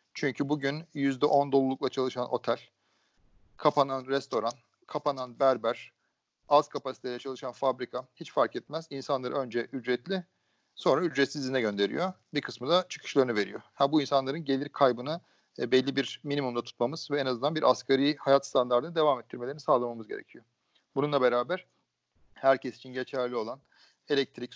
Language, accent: Turkish, native